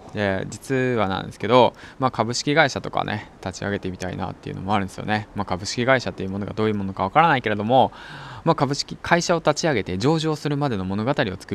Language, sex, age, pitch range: Japanese, male, 20-39, 95-135 Hz